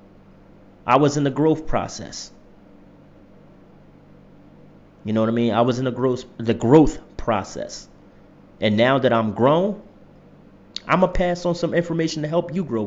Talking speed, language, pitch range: 165 wpm, English, 110-150 Hz